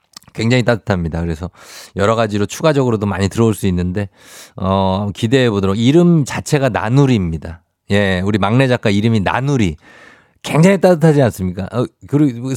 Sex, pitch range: male, 100-140 Hz